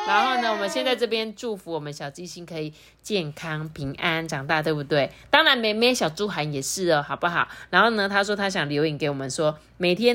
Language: Chinese